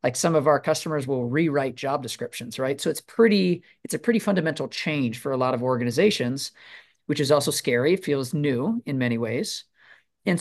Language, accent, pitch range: English, American, 130-160 Hz